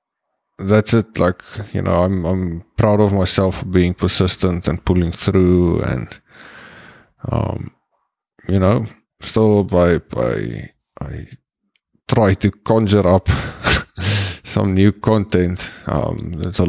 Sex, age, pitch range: male, 20-39, 85-105 Hz